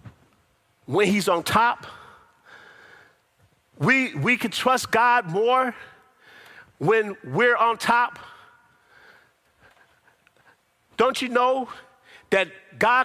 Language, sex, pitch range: English, male, 210-275 Hz